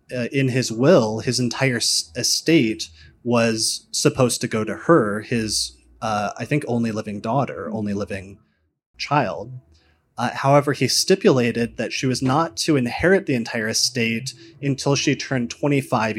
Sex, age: male, 20-39